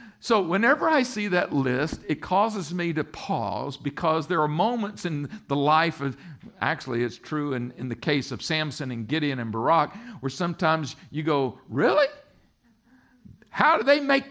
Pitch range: 130-180 Hz